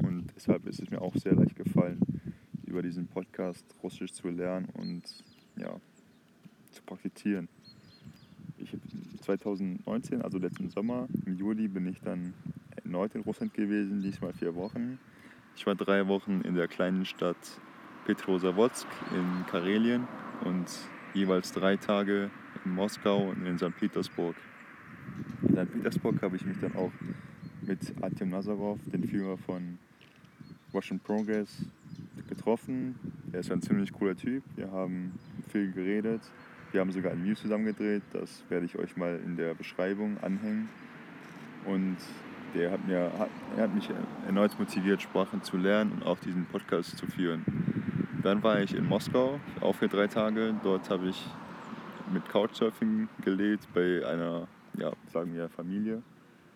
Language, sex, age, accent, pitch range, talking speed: German, male, 20-39, German, 90-105 Hz, 145 wpm